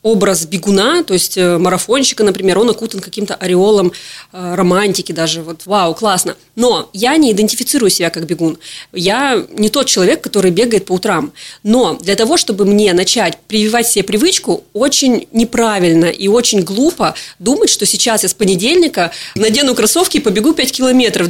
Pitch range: 195-245 Hz